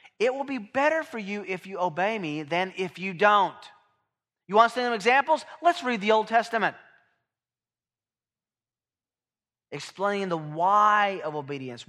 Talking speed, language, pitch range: 150 wpm, English, 155-215 Hz